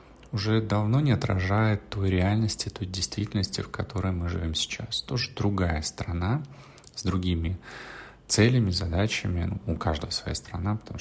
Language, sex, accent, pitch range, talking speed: Russian, male, native, 85-110 Hz, 140 wpm